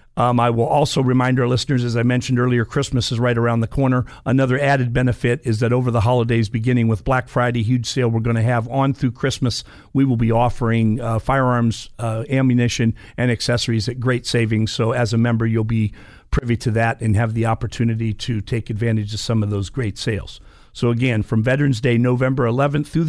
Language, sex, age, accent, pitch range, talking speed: English, male, 50-69, American, 115-130 Hz, 210 wpm